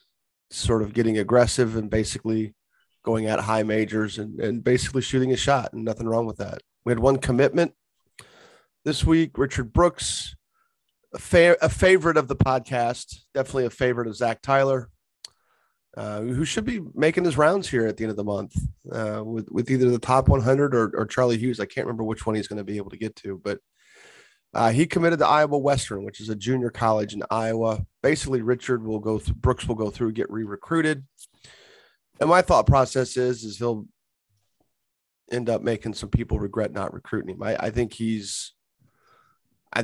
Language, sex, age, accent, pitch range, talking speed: English, male, 30-49, American, 105-130 Hz, 190 wpm